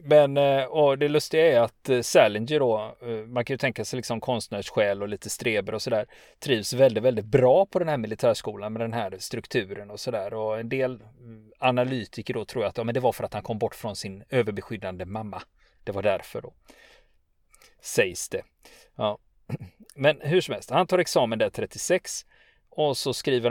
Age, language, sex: 30-49, Swedish, male